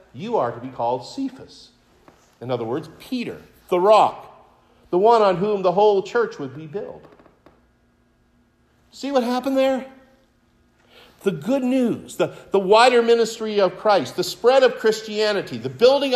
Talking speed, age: 150 wpm, 50-69